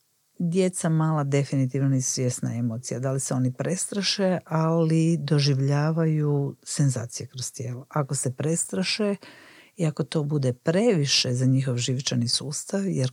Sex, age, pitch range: female, 50-69, 130-175 Hz